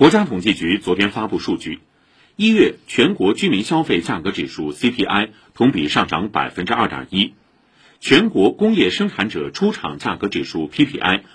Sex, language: male, Chinese